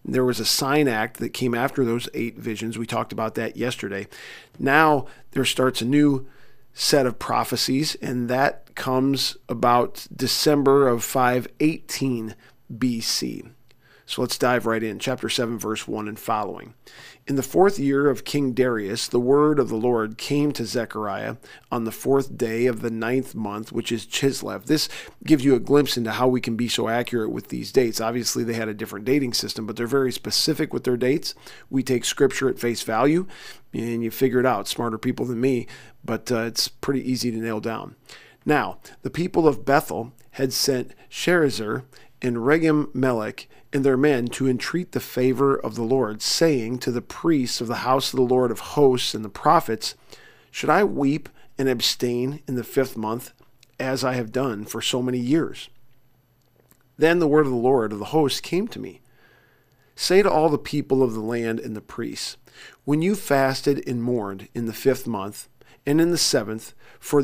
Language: English